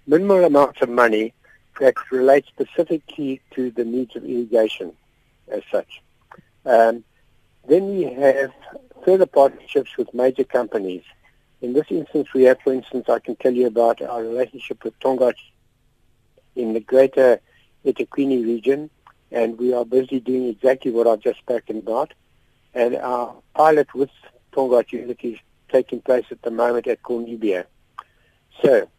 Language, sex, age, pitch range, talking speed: English, male, 60-79, 120-150 Hz, 145 wpm